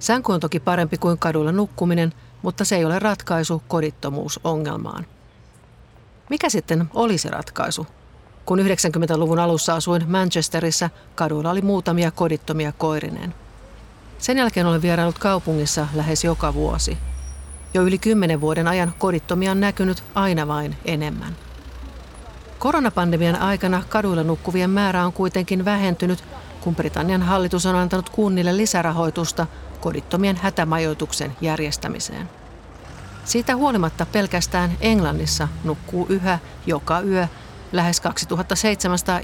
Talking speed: 115 wpm